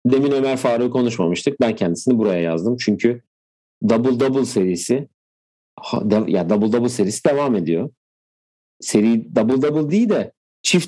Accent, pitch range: native, 95-130 Hz